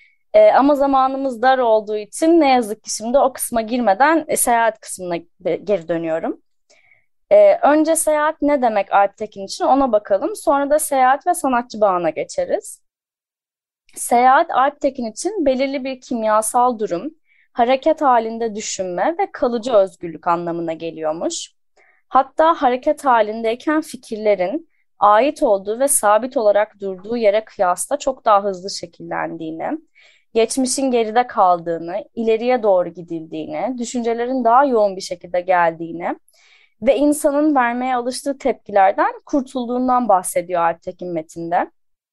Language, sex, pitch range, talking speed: Turkish, female, 205-285 Hz, 120 wpm